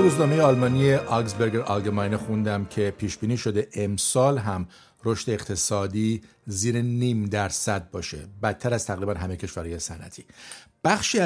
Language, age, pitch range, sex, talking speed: Persian, 50-69, 100-125 Hz, male, 125 wpm